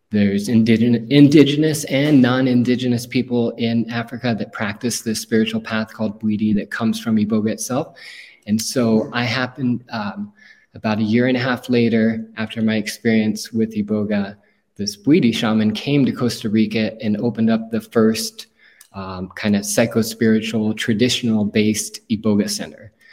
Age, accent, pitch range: 20-39, American, 110-125 Hz